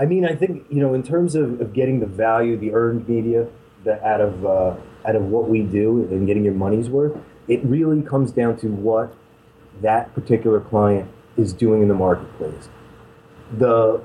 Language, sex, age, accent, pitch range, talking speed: English, male, 30-49, American, 115-145 Hz, 190 wpm